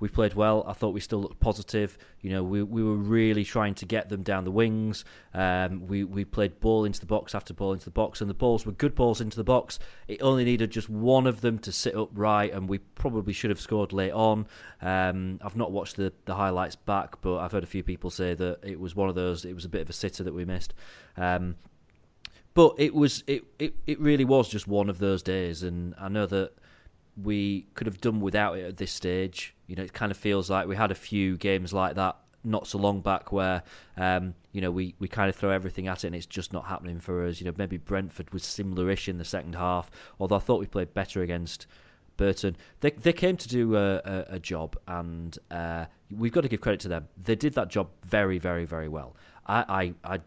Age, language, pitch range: 30-49, English, 90-105 Hz